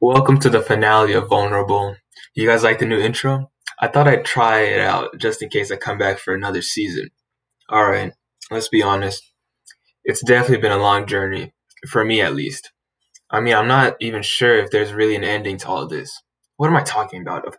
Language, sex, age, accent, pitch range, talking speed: English, male, 10-29, American, 110-135 Hz, 210 wpm